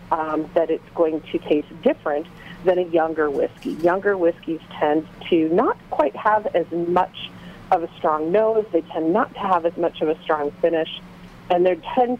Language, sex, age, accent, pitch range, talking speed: English, female, 40-59, American, 155-185 Hz, 185 wpm